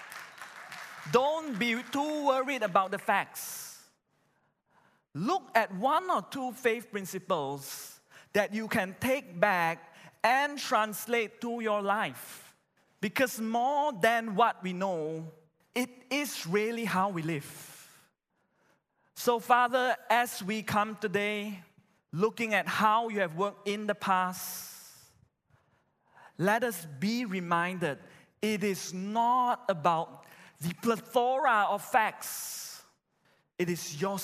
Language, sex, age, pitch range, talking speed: English, male, 20-39, 165-225 Hz, 115 wpm